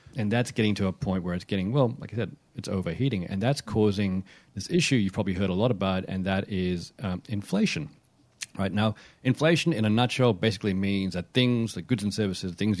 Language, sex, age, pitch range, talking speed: English, male, 40-59, 95-125 Hz, 220 wpm